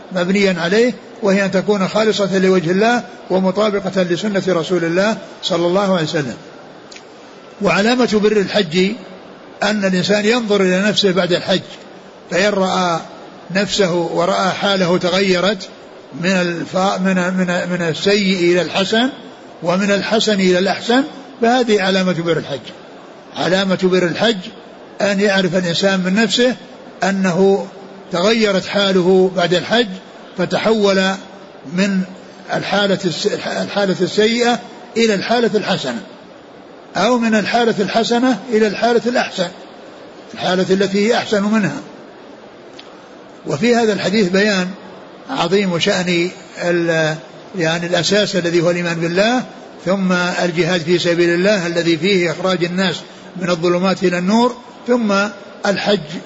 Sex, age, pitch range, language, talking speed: male, 60-79, 180-210 Hz, Arabic, 115 wpm